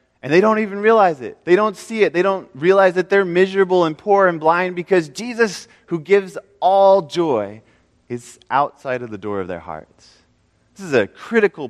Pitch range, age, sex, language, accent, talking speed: 120-170 Hz, 20-39, male, English, American, 195 wpm